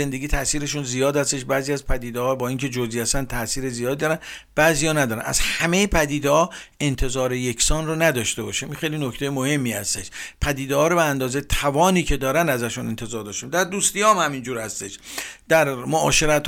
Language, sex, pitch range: Persian, male, 130-160 Hz